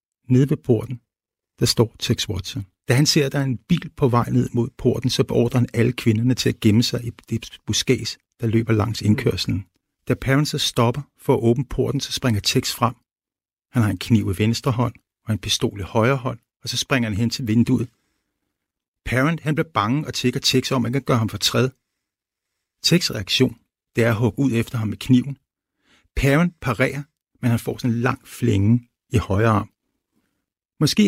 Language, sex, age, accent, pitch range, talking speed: Danish, male, 60-79, native, 115-135 Hz, 205 wpm